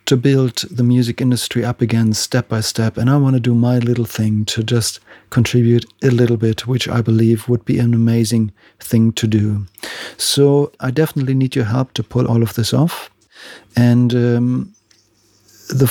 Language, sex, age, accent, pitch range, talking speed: English, male, 40-59, German, 115-135 Hz, 185 wpm